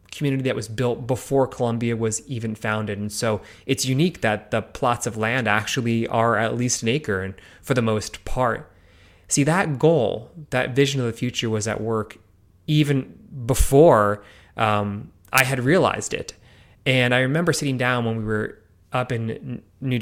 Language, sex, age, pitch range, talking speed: English, male, 20-39, 110-135 Hz, 175 wpm